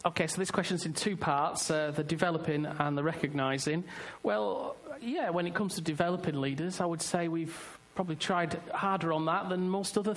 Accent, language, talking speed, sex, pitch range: British, English, 195 wpm, male, 150-180 Hz